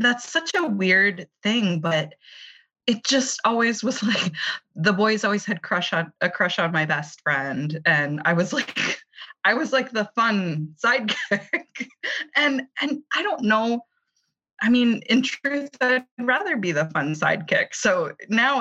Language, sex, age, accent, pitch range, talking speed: English, female, 20-39, American, 170-230 Hz, 160 wpm